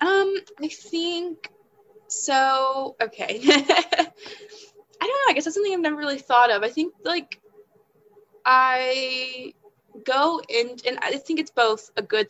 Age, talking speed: 20-39, 145 wpm